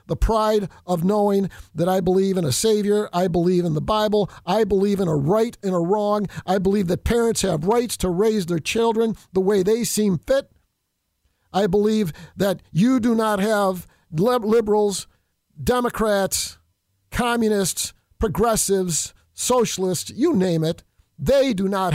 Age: 50-69